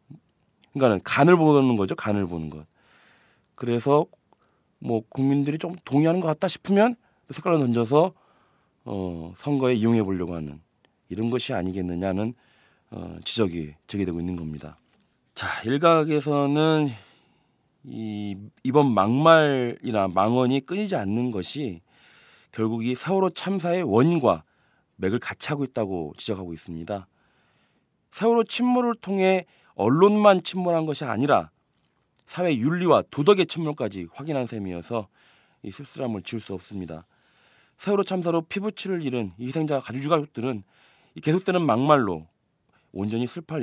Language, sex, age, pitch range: Korean, male, 30-49, 100-155 Hz